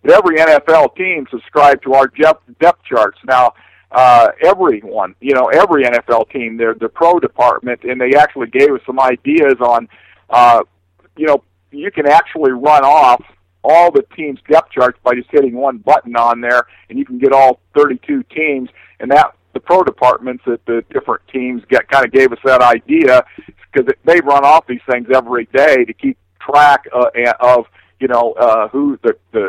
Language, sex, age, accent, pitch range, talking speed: English, male, 50-69, American, 125-155 Hz, 180 wpm